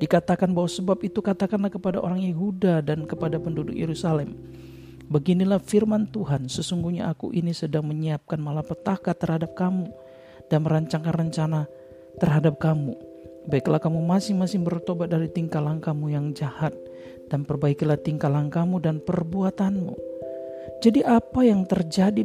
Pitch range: 155-195 Hz